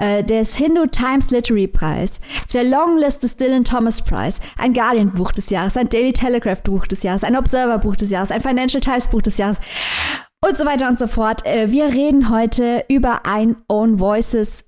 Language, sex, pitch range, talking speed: German, female, 205-245 Hz, 190 wpm